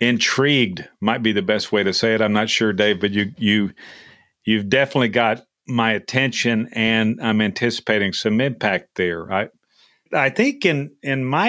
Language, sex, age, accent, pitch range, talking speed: English, male, 50-69, American, 100-125 Hz, 170 wpm